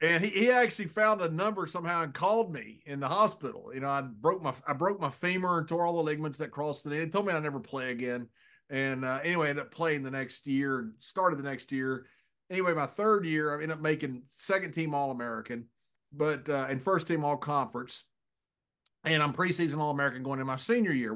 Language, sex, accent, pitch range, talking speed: English, male, American, 140-180 Hz, 240 wpm